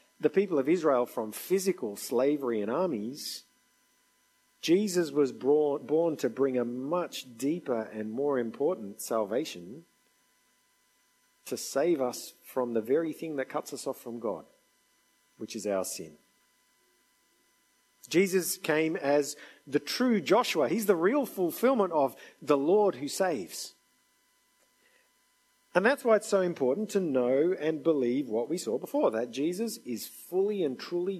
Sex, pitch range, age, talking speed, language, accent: male, 130-195 Hz, 50-69, 140 wpm, English, Australian